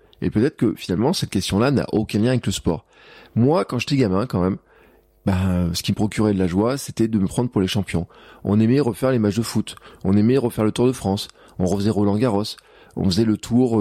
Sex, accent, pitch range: male, French, 95-115 Hz